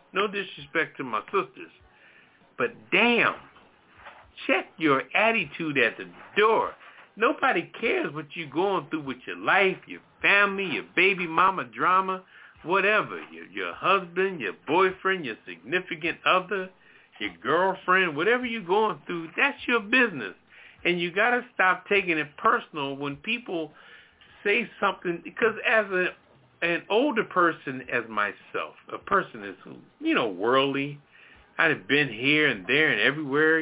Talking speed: 145 wpm